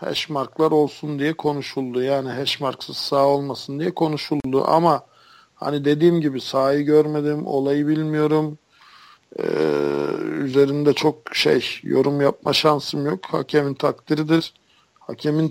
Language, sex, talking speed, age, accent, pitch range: Turkish, male, 110 wpm, 50-69, native, 130-150 Hz